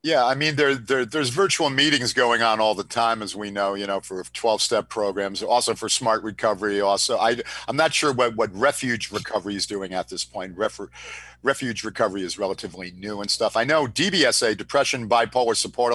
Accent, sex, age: American, male, 50-69